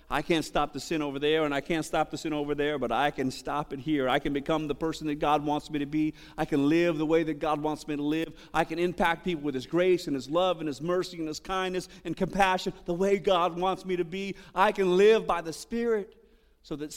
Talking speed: 270 wpm